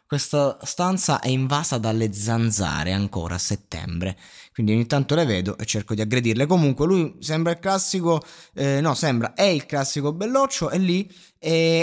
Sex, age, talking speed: male, 20-39, 165 wpm